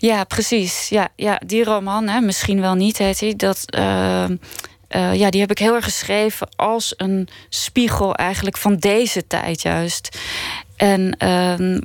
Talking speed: 160 wpm